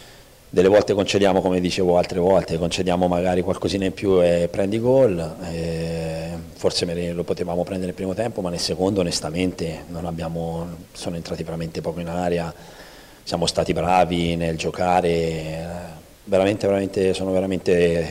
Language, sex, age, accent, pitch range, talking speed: Italian, male, 30-49, native, 80-90 Hz, 145 wpm